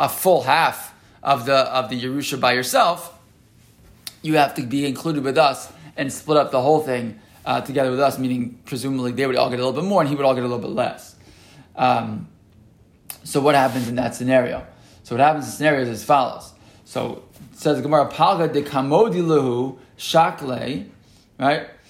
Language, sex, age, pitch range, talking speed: English, male, 20-39, 125-145 Hz, 195 wpm